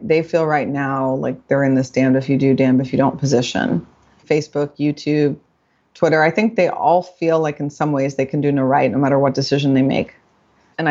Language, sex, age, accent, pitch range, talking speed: English, female, 30-49, American, 150-190 Hz, 225 wpm